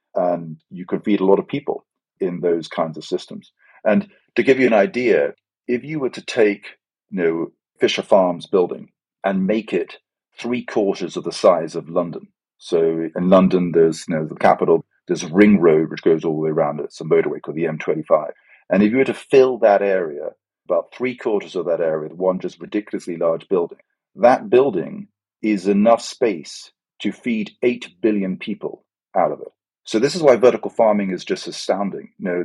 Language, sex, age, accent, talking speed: English, male, 40-59, British, 200 wpm